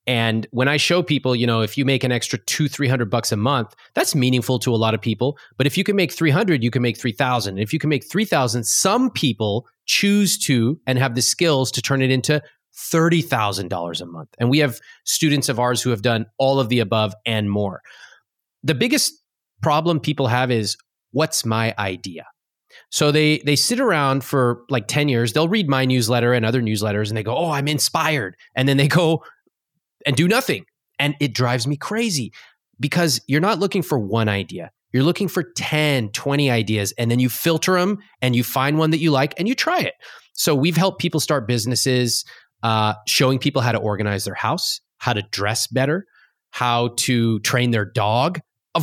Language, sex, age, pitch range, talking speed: English, male, 30-49, 115-150 Hz, 210 wpm